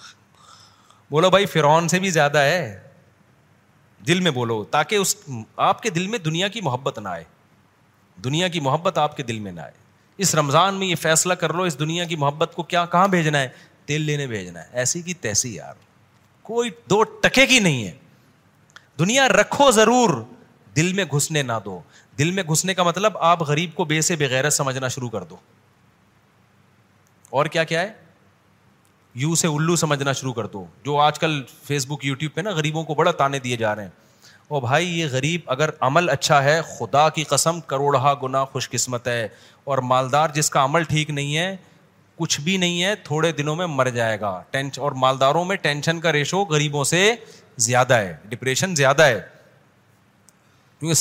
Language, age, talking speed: Urdu, 40-59, 185 wpm